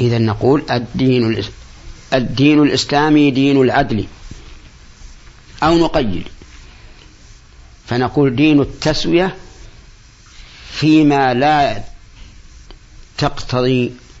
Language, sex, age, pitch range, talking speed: Arabic, male, 50-69, 95-125 Hz, 60 wpm